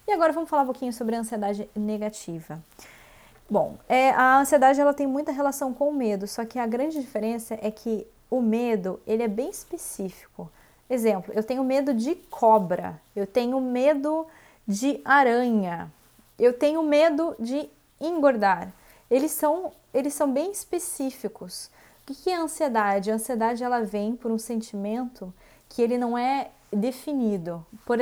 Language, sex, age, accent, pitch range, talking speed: English, female, 20-39, Brazilian, 210-270 Hz, 160 wpm